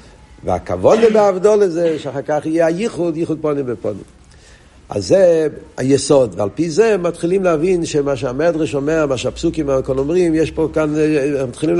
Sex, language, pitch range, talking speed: male, Hebrew, 140-170 Hz, 160 wpm